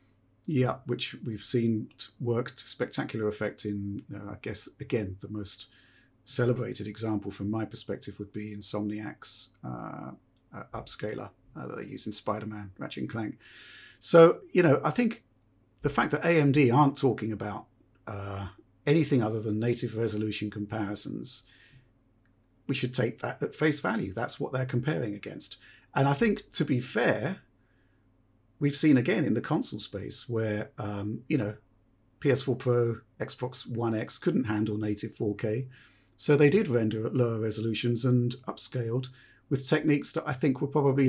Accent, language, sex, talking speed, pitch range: British, English, male, 155 wpm, 105-135 Hz